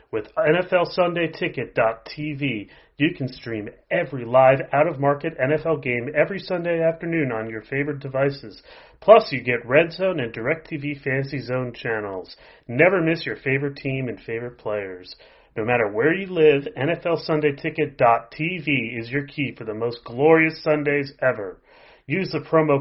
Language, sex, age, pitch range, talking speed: English, male, 30-49, 125-160 Hz, 140 wpm